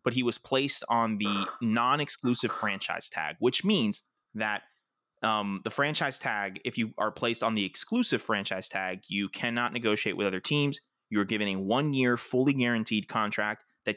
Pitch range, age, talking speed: 105-135 Hz, 20-39, 170 wpm